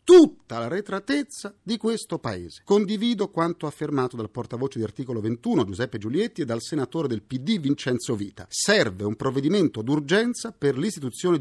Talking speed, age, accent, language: 155 wpm, 50-69, native, Italian